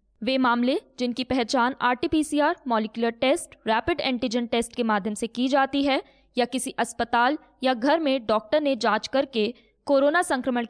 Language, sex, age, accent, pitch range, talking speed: Hindi, female, 20-39, native, 230-280 Hz, 155 wpm